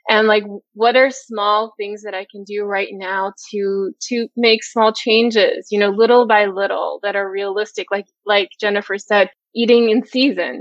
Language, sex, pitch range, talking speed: English, female, 200-225 Hz, 180 wpm